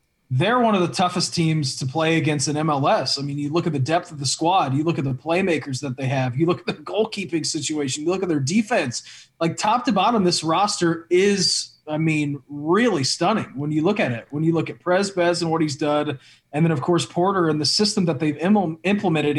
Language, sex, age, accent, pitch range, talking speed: English, male, 20-39, American, 155-210 Hz, 240 wpm